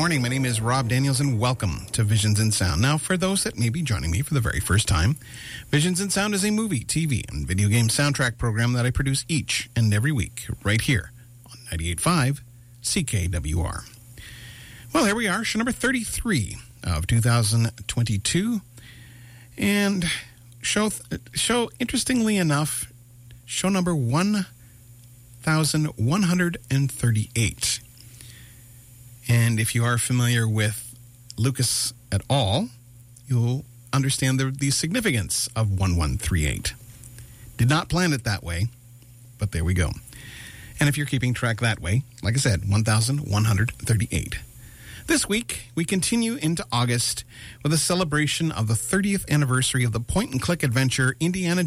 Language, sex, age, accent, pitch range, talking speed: English, male, 50-69, American, 115-145 Hz, 145 wpm